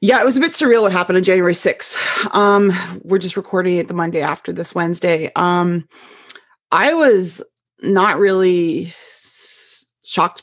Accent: American